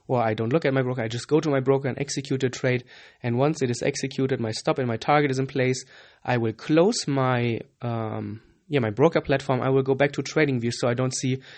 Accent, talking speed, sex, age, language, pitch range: German, 265 wpm, male, 20-39, English, 125-150 Hz